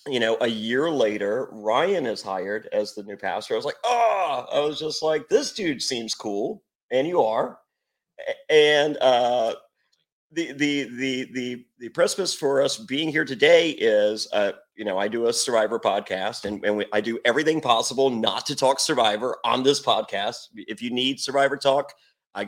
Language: English